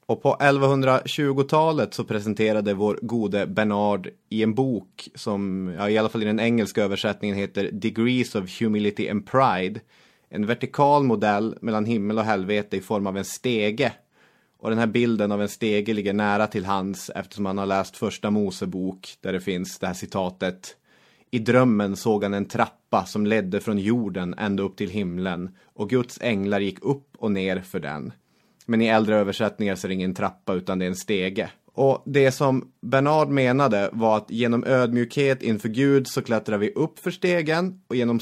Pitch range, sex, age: 100-120 Hz, male, 30-49